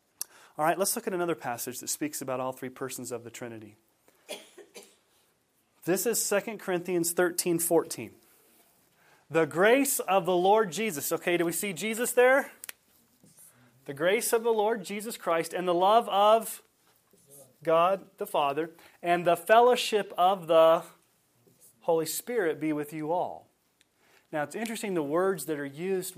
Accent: American